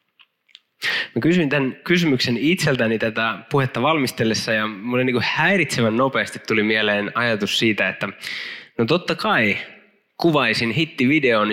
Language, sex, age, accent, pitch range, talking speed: Finnish, male, 20-39, native, 110-145 Hz, 125 wpm